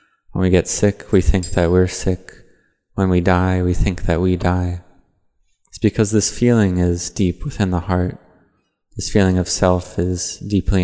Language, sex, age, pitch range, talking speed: English, male, 20-39, 90-100 Hz, 175 wpm